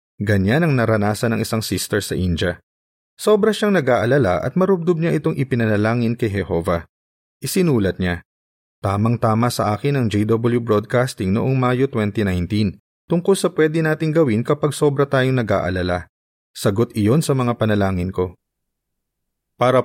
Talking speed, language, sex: 135 wpm, Filipino, male